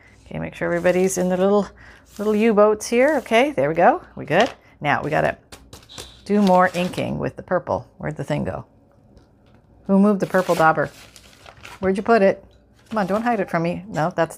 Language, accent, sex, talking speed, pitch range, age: English, American, female, 200 wpm, 155-205 Hz, 40-59